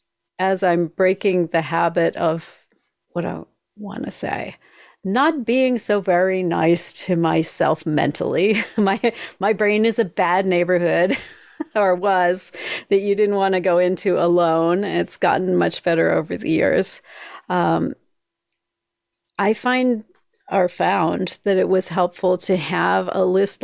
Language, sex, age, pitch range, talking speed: English, female, 40-59, 175-205 Hz, 140 wpm